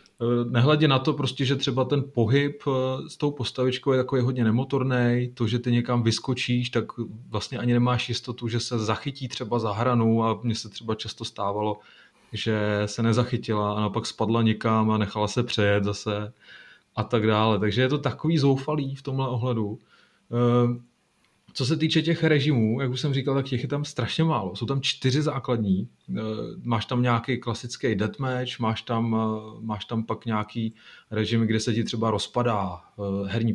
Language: Czech